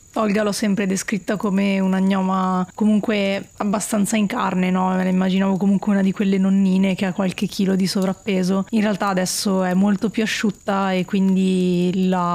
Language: Italian